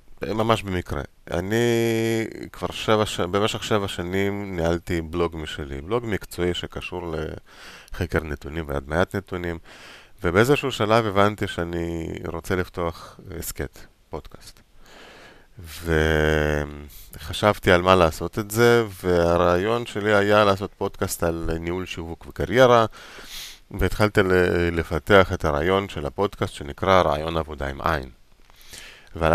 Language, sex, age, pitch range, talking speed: Hebrew, male, 30-49, 80-105 Hz, 110 wpm